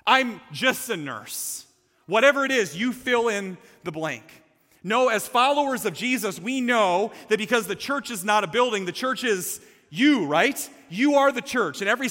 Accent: American